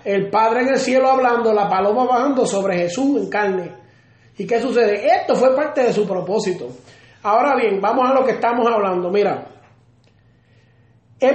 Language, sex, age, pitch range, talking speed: Spanish, male, 30-49, 180-255 Hz, 170 wpm